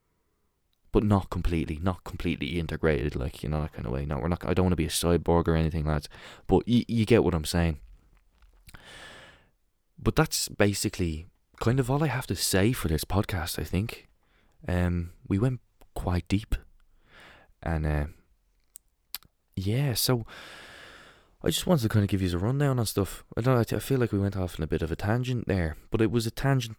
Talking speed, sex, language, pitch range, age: 200 wpm, male, English, 80-105 Hz, 20-39